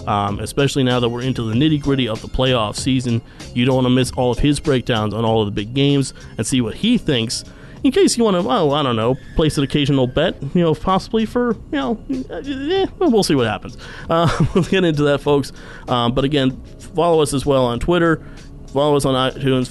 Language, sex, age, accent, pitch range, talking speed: English, male, 30-49, American, 120-155 Hz, 230 wpm